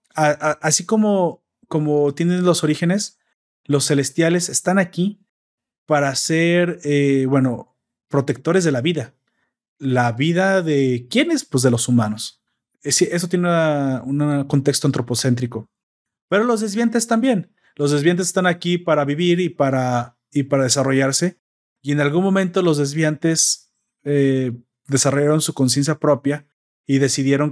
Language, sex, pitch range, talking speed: Spanish, male, 140-175 Hz, 130 wpm